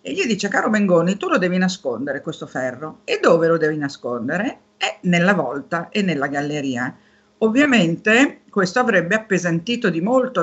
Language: Italian